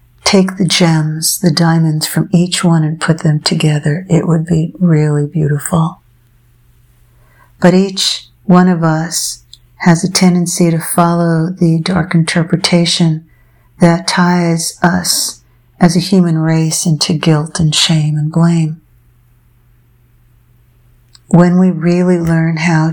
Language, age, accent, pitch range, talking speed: English, 60-79, American, 145-175 Hz, 125 wpm